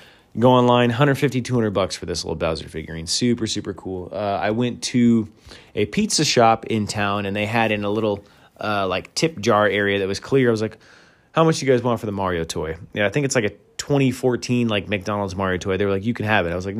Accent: American